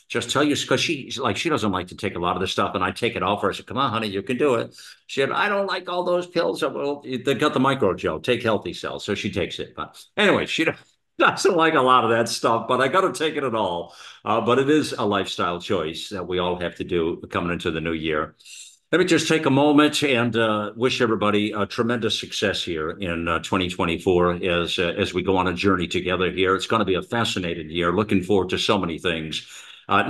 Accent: American